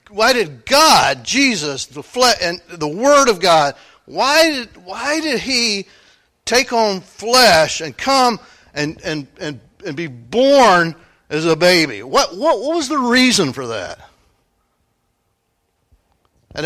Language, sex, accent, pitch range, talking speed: English, male, American, 160-245 Hz, 140 wpm